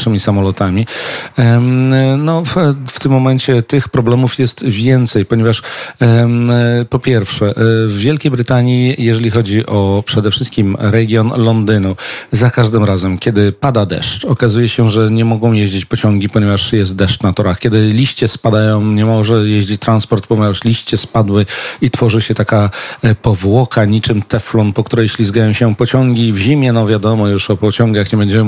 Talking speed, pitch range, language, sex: 150 wpm, 105-125 Hz, Polish, male